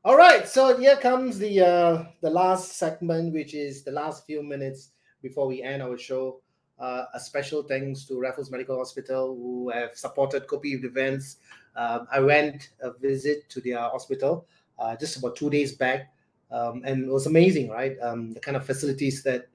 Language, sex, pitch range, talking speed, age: English, male, 125-150 Hz, 190 wpm, 30-49